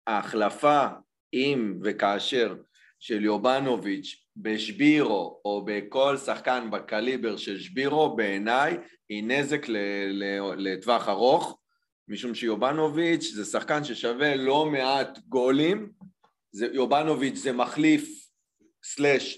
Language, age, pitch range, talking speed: Hebrew, 30-49, 115-150 Hz, 90 wpm